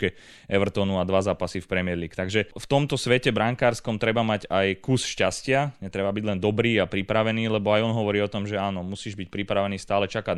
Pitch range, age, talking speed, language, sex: 95-105 Hz, 20-39, 210 wpm, Slovak, male